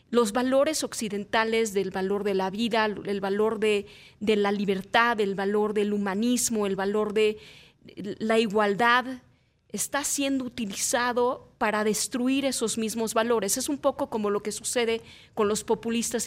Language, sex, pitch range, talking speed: Spanish, female, 210-255 Hz, 150 wpm